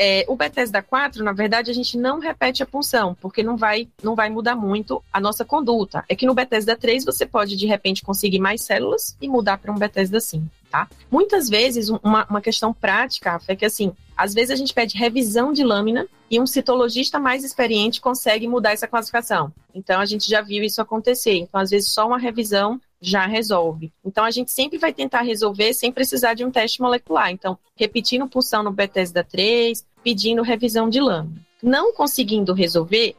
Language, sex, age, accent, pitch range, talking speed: Portuguese, female, 20-39, Brazilian, 200-245 Hz, 195 wpm